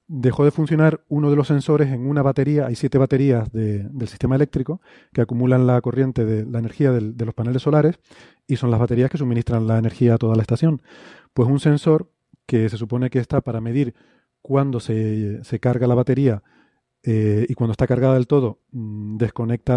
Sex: male